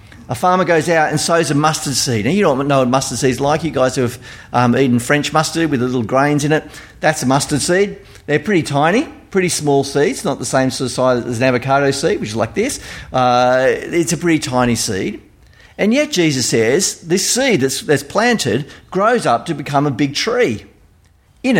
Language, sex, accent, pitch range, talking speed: English, male, Australian, 125-165 Hz, 215 wpm